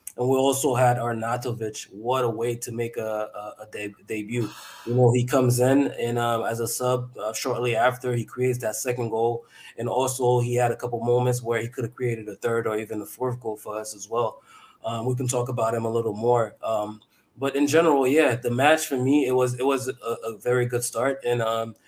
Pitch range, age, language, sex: 115-130 Hz, 20-39, English, male